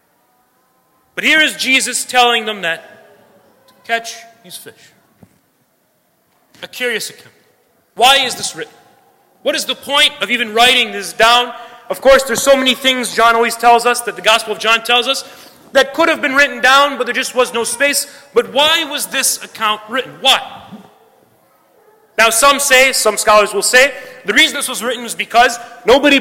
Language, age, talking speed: English, 30-49, 180 wpm